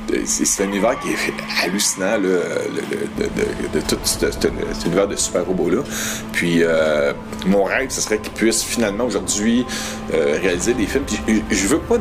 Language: English